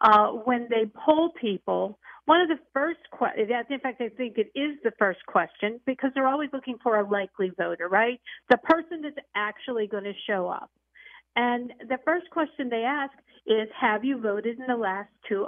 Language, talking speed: English, 190 wpm